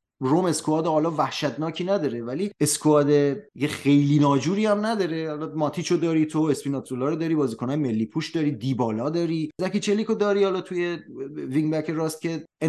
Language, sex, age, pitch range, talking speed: Persian, male, 30-49, 140-185 Hz, 145 wpm